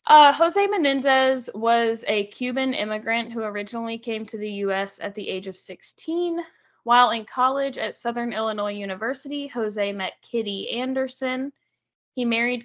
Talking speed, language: 145 wpm, English